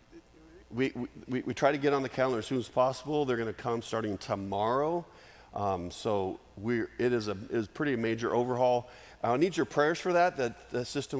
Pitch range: 105-130 Hz